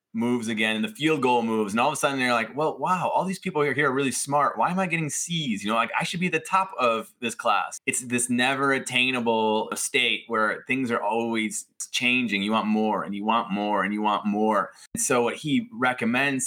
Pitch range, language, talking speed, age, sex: 105-130 Hz, English, 235 wpm, 20-39, male